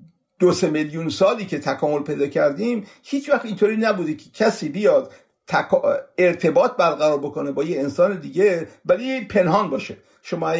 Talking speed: 145 wpm